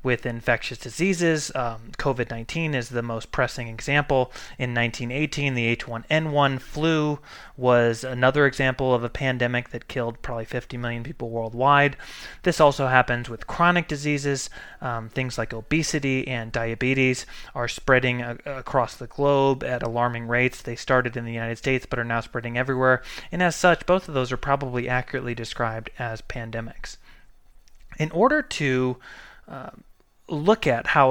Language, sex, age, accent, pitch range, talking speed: English, male, 20-39, American, 120-150 Hz, 155 wpm